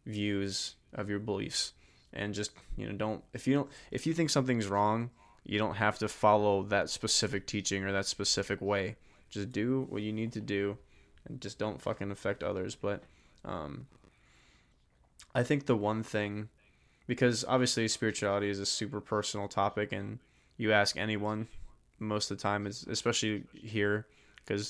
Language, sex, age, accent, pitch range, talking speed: English, male, 20-39, American, 100-110 Hz, 170 wpm